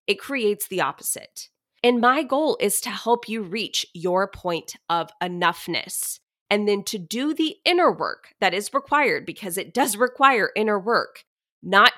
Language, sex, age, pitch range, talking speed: English, female, 20-39, 180-240 Hz, 165 wpm